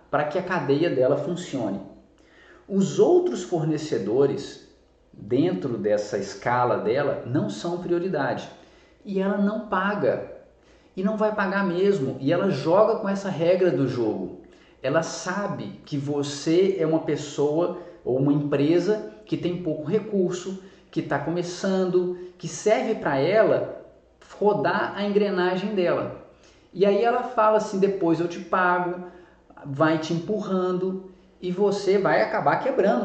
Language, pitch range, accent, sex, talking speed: Portuguese, 155-200 Hz, Brazilian, male, 135 wpm